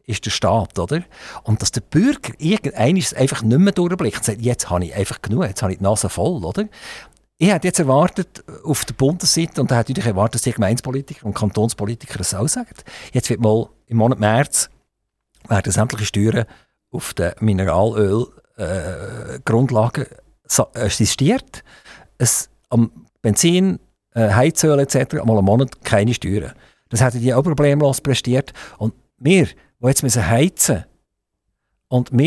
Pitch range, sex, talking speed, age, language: 110-145 Hz, male, 150 wpm, 50-69, German